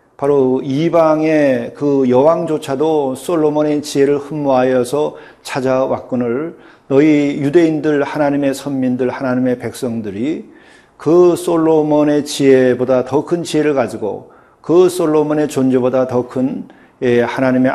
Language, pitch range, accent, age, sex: Korean, 125-150 Hz, native, 40-59, male